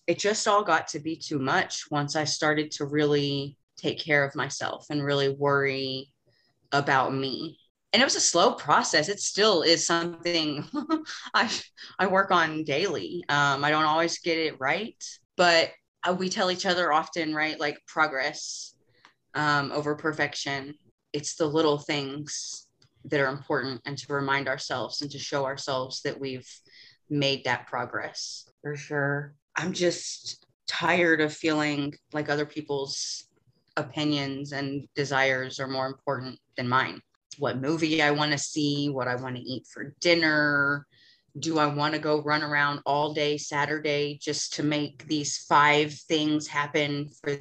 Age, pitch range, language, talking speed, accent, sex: 20-39, 140-160 Hz, English, 155 wpm, American, female